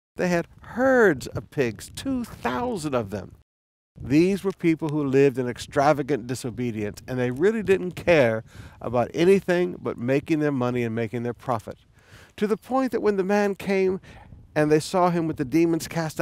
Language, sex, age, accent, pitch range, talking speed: English, male, 50-69, American, 115-165 Hz, 175 wpm